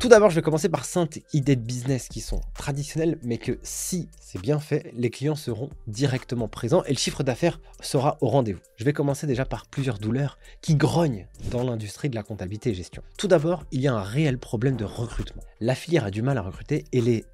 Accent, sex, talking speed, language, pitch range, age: French, male, 230 wpm, French, 115-150 Hz, 20-39